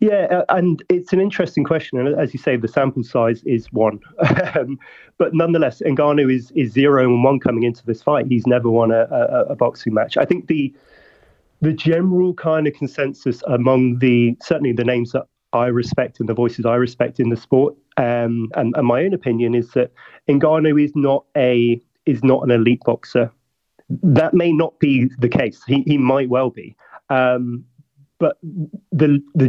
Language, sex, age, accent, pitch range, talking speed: English, male, 30-49, British, 120-150 Hz, 185 wpm